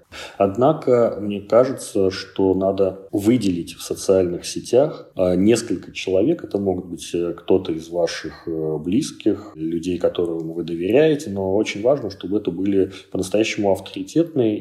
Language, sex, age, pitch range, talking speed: Russian, male, 30-49, 85-100 Hz, 125 wpm